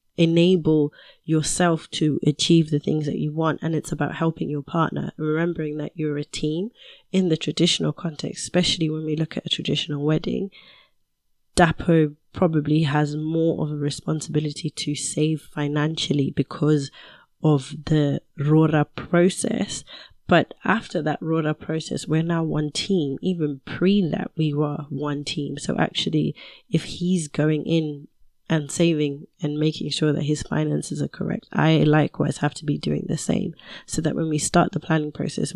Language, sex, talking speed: English, female, 160 wpm